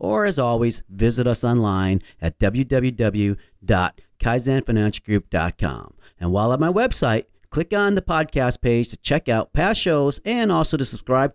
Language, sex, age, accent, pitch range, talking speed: English, male, 40-59, American, 105-150 Hz, 145 wpm